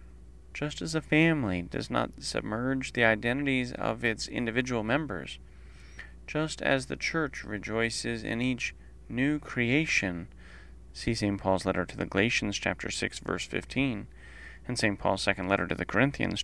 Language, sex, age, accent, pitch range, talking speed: English, male, 30-49, American, 85-130 Hz, 150 wpm